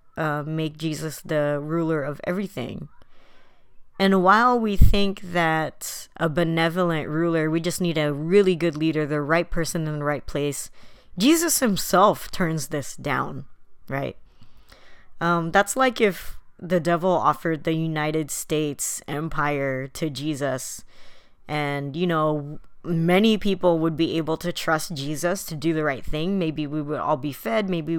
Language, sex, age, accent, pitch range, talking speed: English, female, 20-39, American, 155-185 Hz, 150 wpm